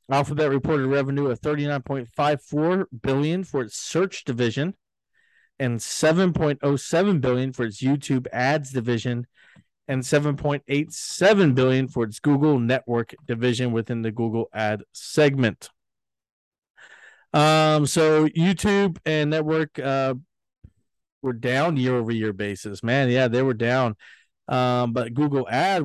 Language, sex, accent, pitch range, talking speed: English, male, American, 115-140 Hz, 145 wpm